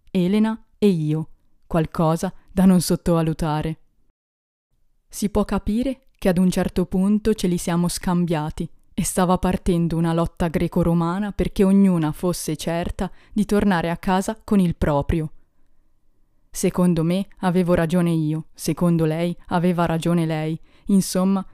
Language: Italian